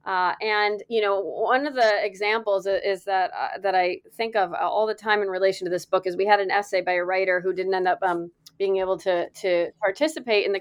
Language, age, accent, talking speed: English, 30-49, American, 245 wpm